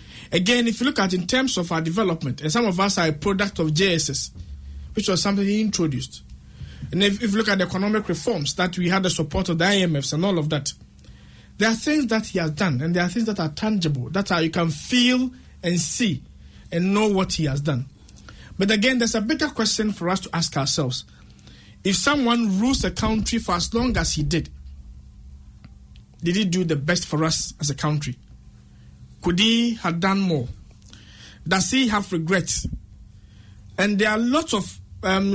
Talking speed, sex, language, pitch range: 200 wpm, male, English, 145-210 Hz